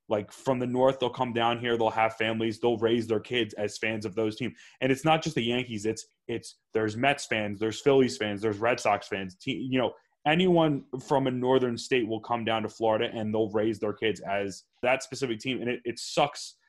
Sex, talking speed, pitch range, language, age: male, 230 wpm, 110-135 Hz, English, 20-39